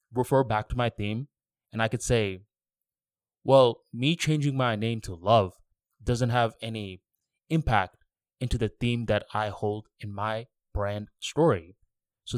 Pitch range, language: 105-120 Hz, English